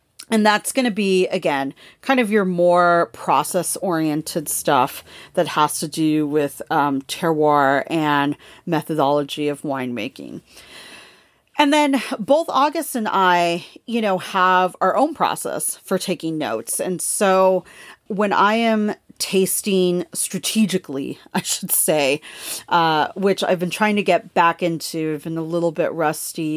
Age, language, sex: 40-59, English, female